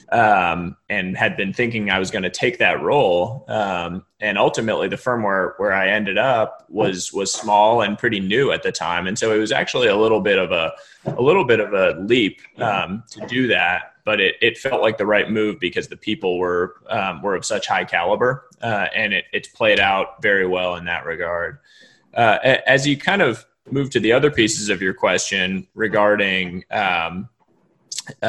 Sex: male